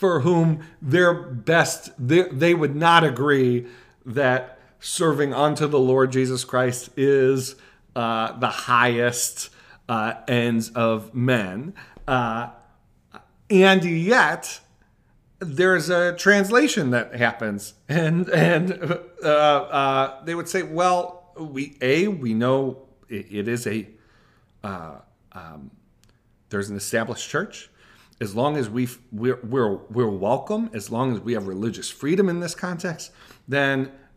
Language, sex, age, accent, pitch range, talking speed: English, male, 40-59, American, 115-165 Hz, 125 wpm